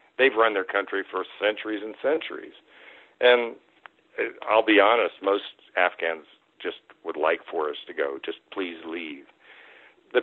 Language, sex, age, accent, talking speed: English, male, 50-69, American, 145 wpm